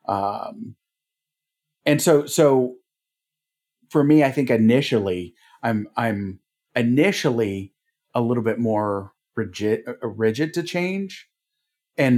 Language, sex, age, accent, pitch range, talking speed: English, male, 40-59, American, 100-135 Hz, 105 wpm